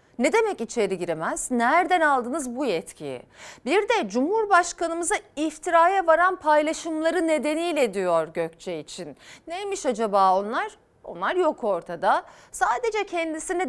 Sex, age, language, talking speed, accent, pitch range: female, 40-59, Turkish, 115 wpm, native, 200-290 Hz